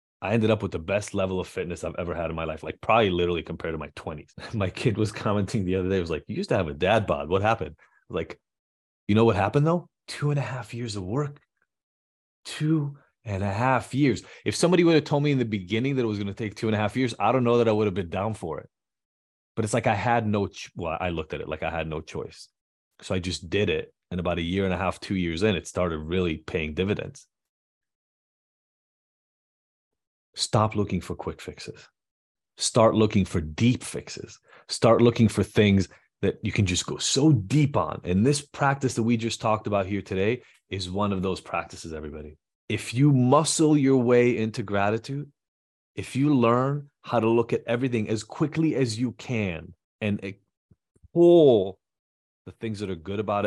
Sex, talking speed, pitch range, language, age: male, 215 wpm, 90-125 Hz, English, 30-49